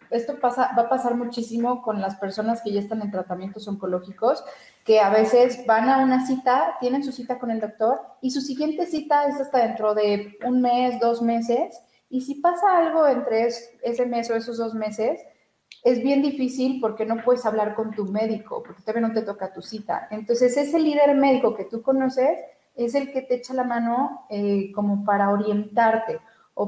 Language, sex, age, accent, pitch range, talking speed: Spanish, female, 30-49, Mexican, 210-250 Hz, 195 wpm